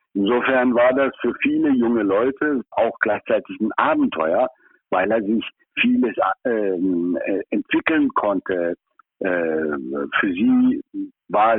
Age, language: 60-79, German